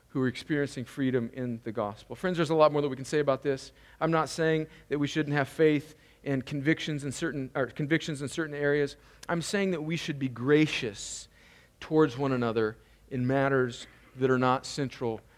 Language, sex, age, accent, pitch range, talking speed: English, male, 50-69, American, 130-165 Hz, 200 wpm